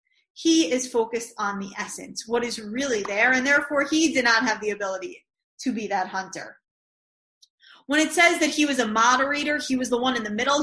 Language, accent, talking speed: English, American, 210 wpm